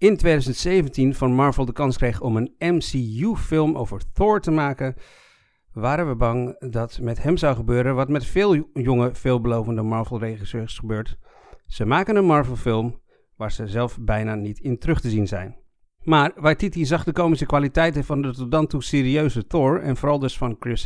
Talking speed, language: 185 wpm, Dutch